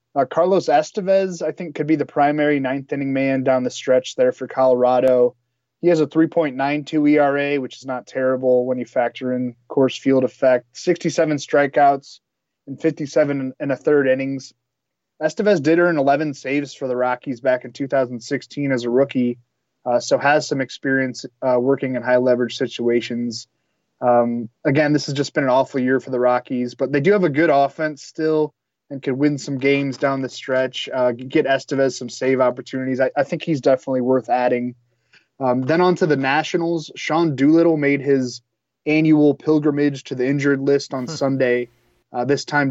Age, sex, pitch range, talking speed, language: 20-39, male, 125-145 Hz, 180 wpm, English